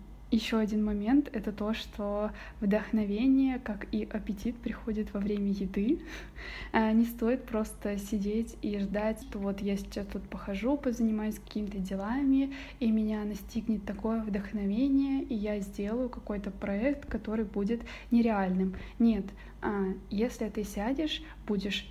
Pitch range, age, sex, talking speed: 205-235 Hz, 20-39, female, 130 wpm